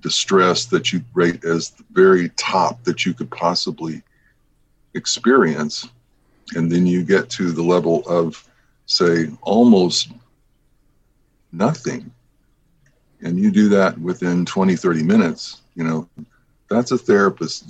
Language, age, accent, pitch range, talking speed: English, 50-69, American, 85-95 Hz, 120 wpm